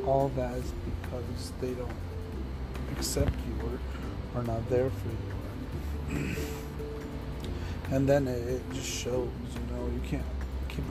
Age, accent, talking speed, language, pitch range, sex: 40-59, American, 130 wpm, English, 70-115 Hz, male